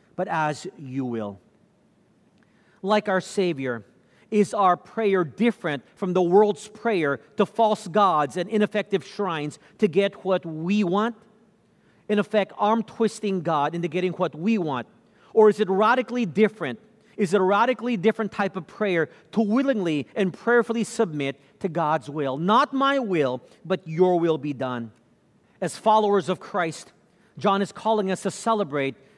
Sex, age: male, 40-59